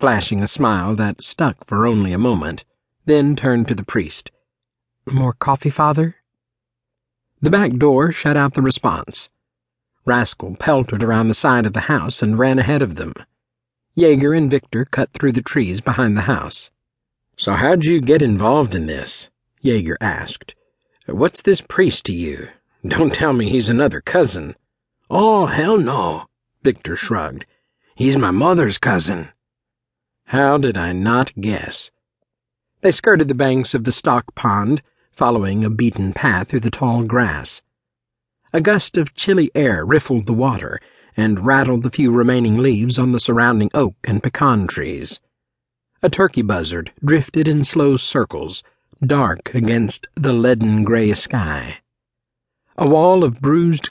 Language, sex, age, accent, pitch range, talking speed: English, male, 50-69, American, 110-140 Hz, 150 wpm